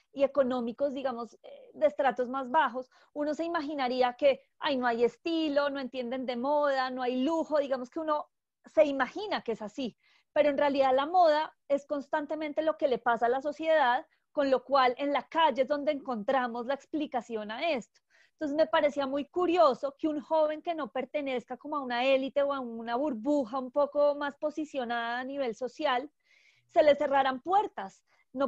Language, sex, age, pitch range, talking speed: English, female, 30-49, 255-300 Hz, 185 wpm